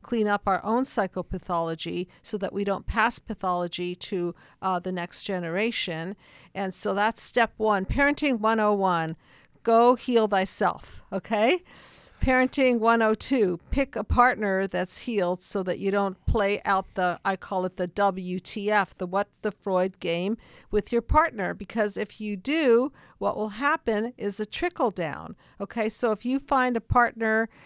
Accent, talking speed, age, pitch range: American, 155 wpm, 50-69, 185-225 Hz